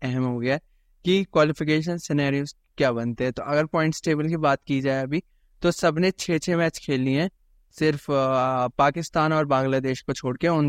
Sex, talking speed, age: male, 155 wpm, 20-39